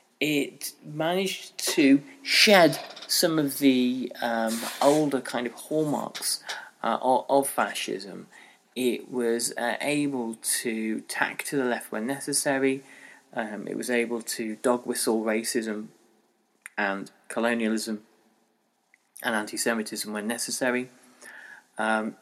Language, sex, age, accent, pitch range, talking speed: English, male, 20-39, British, 110-130 Hz, 110 wpm